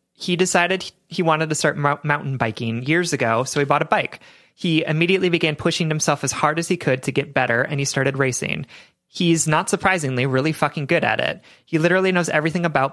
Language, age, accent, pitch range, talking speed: English, 30-49, American, 135-175 Hz, 210 wpm